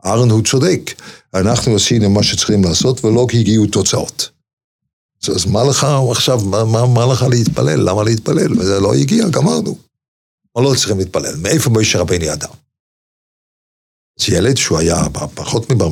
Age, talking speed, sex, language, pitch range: 50-69, 150 wpm, male, Hebrew, 95-135 Hz